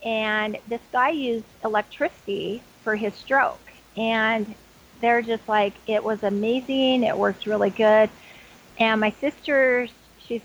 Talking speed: 130 wpm